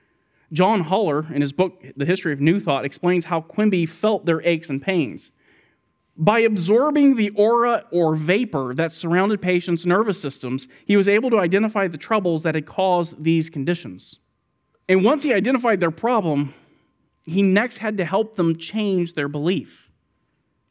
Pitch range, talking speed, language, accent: 145-190 Hz, 160 wpm, English, American